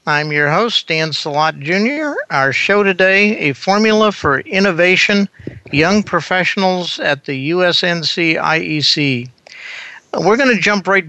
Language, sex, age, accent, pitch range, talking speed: English, male, 60-79, American, 140-170 Hz, 130 wpm